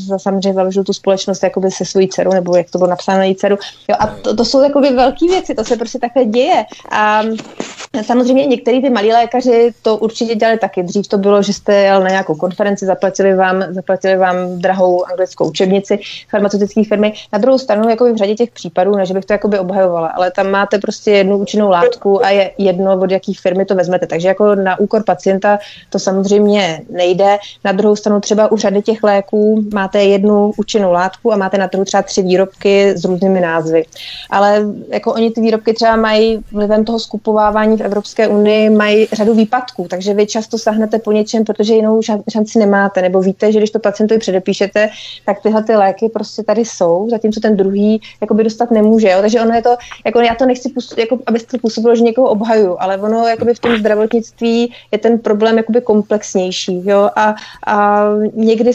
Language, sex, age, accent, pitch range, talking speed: Czech, female, 20-39, native, 195-225 Hz, 195 wpm